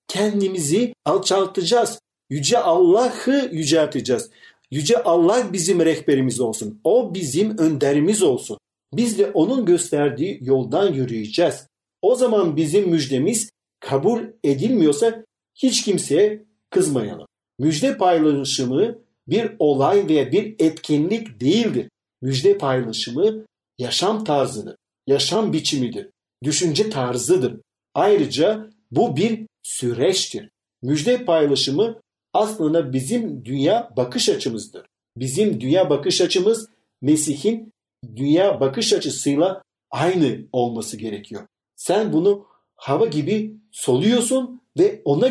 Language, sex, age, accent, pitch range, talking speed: Turkish, male, 50-69, native, 145-220 Hz, 100 wpm